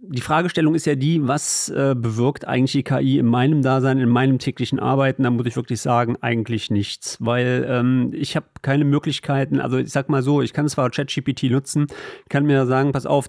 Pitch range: 130-170 Hz